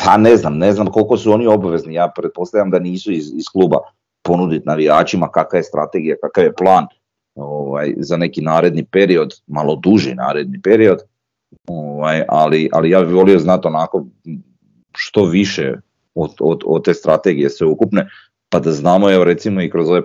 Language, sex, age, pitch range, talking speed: Croatian, male, 30-49, 85-110 Hz, 175 wpm